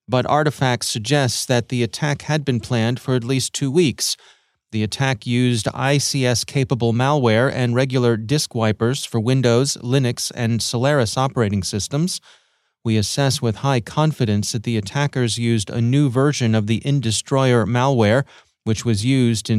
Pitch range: 115-140 Hz